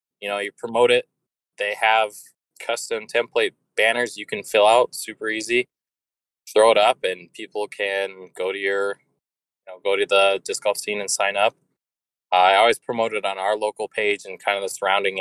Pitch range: 95-155 Hz